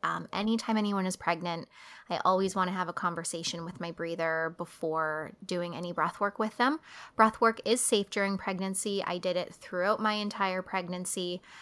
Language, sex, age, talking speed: English, female, 20-39, 180 wpm